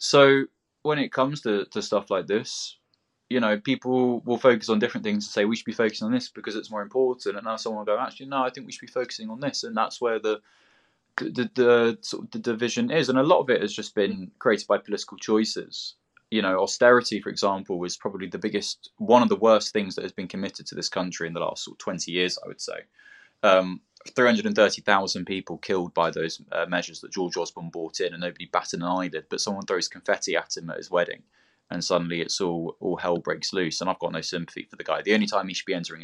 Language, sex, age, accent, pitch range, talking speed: English, male, 20-39, British, 90-130 Hz, 250 wpm